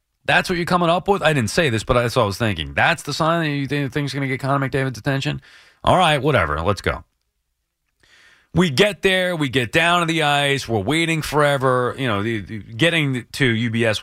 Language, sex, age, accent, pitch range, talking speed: English, male, 30-49, American, 105-155 Hz, 230 wpm